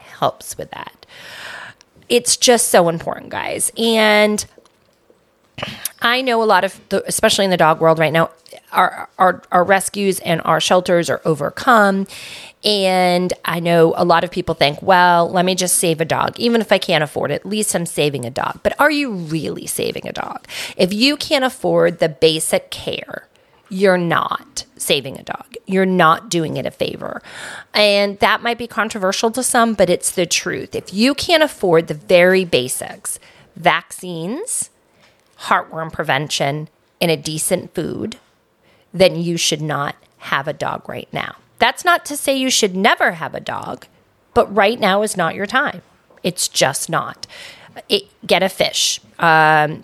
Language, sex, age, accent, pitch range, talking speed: English, female, 30-49, American, 160-215 Hz, 170 wpm